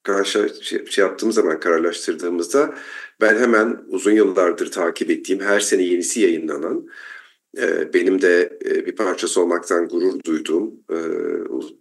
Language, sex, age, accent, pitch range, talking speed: Turkish, male, 50-69, native, 350-415 Hz, 130 wpm